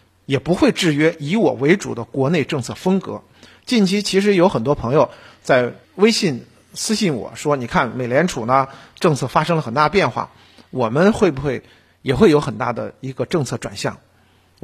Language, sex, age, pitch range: Chinese, male, 50-69, 125-195 Hz